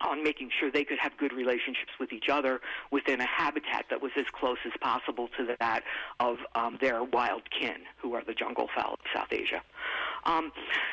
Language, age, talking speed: English, 50-69, 205 wpm